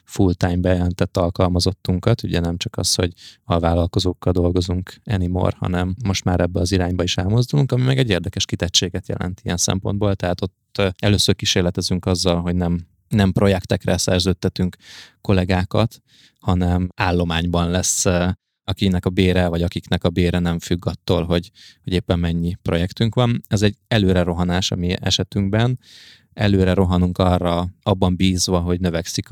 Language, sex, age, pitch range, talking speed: Hungarian, male, 20-39, 90-105 Hz, 145 wpm